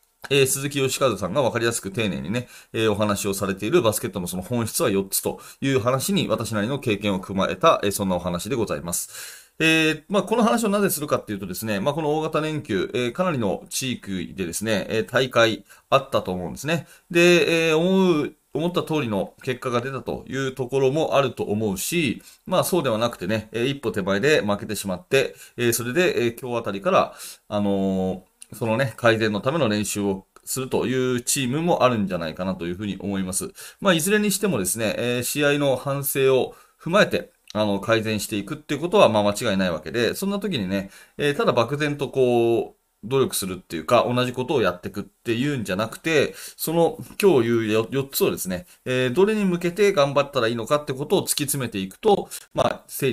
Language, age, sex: Japanese, 30-49, male